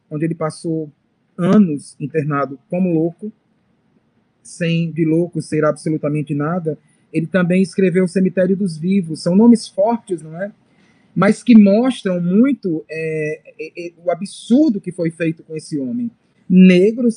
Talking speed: 145 wpm